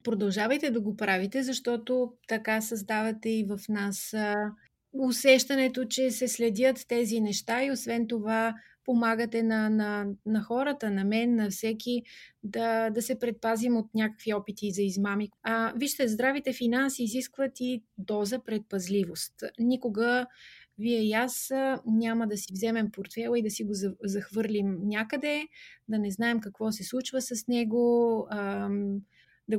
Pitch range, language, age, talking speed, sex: 210-255 Hz, Bulgarian, 30-49, 140 wpm, female